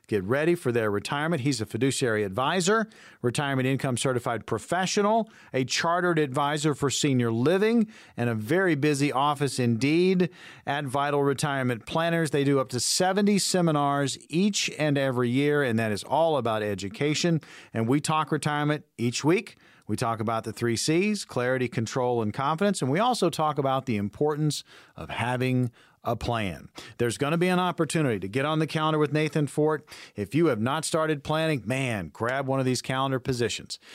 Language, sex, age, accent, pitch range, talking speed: English, male, 40-59, American, 125-170 Hz, 175 wpm